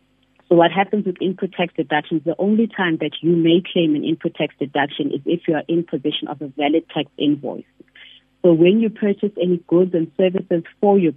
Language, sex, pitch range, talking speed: English, female, 145-170 Hz, 210 wpm